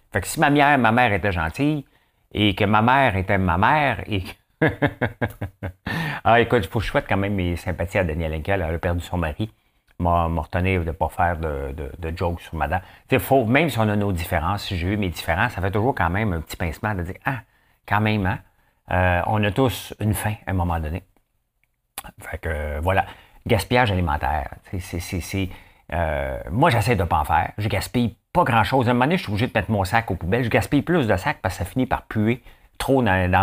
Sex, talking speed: male, 235 wpm